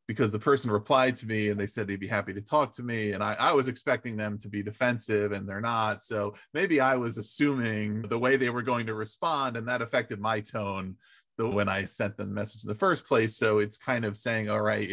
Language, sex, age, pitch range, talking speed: English, male, 30-49, 105-125 Hz, 250 wpm